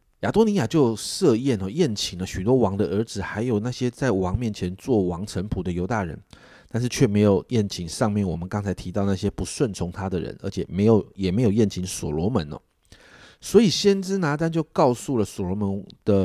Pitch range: 95-120 Hz